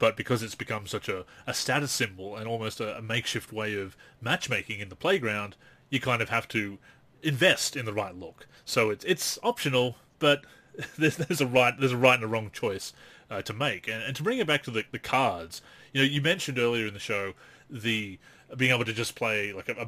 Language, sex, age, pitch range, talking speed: English, male, 30-49, 110-135 Hz, 230 wpm